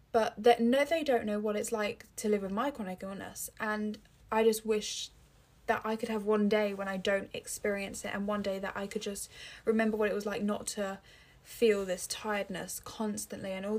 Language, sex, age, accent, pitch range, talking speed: English, female, 10-29, British, 195-225 Hz, 220 wpm